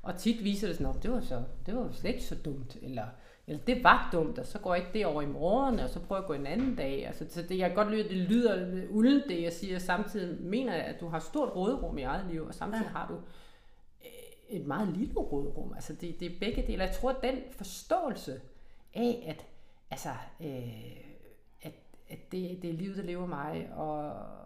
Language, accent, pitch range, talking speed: Danish, native, 155-215 Hz, 225 wpm